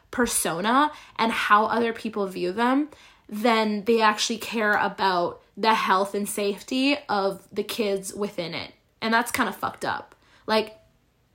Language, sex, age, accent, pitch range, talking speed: English, female, 20-39, American, 195-225 Hz, 150 wpm